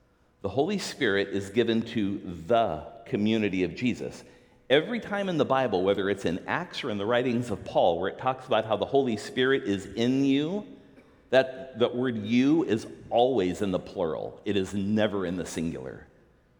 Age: 50-69